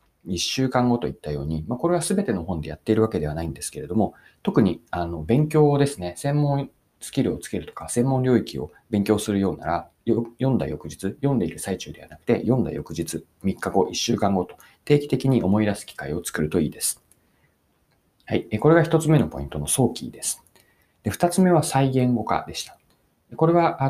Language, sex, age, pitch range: Japanese, male, 40-59, 90-145 Hz